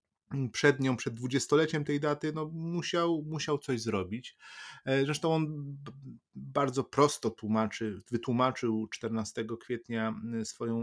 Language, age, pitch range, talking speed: English, 30-49, 110-125 Hz, 110 wpm